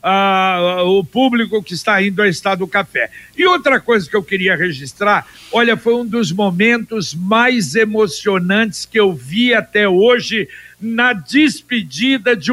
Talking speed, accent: 155 wpm, Brazilian